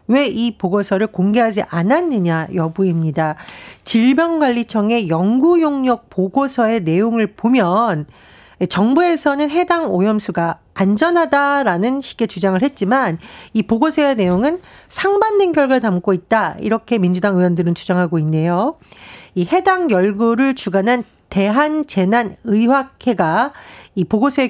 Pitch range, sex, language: 190-285 Hz, female, Korean